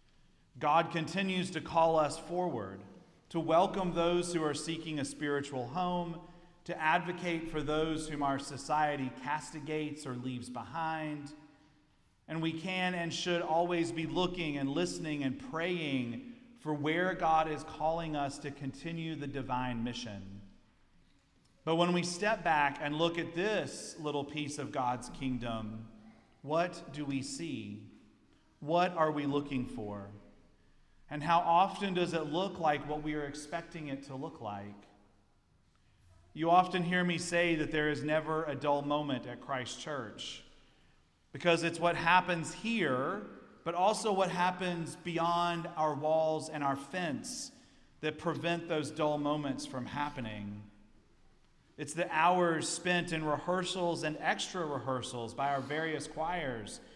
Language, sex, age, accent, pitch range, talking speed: English, male, 40-59, American, 140-170 Hz, 145 wpm